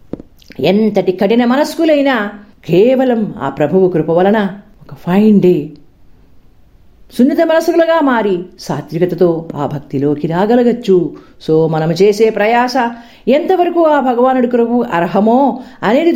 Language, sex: Telugu, female